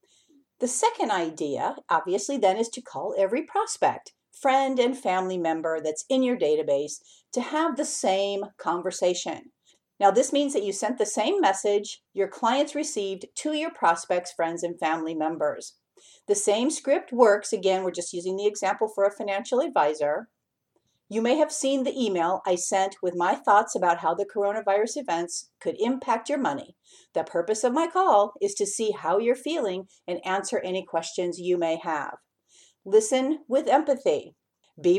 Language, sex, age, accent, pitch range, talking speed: English, female, 50-69, American, 185-265 Hz, 170 wpm